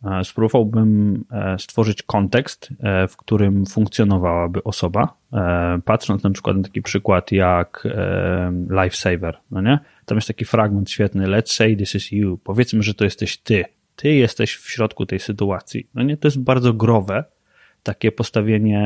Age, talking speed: 20-39, 145 wpm